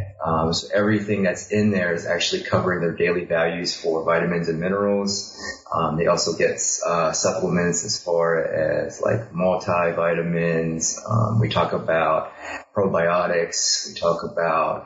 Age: 20-39